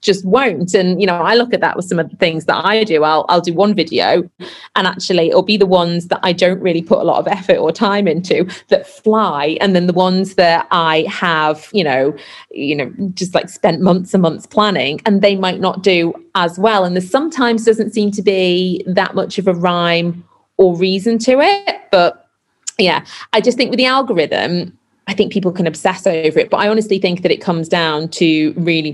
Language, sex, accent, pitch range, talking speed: English, female, British, 165-200 Hz, 225 wpm